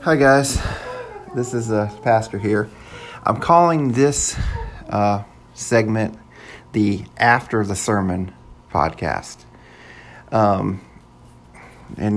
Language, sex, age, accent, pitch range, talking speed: English, male, 40-59, American, 100-115 Hz, 95 wpm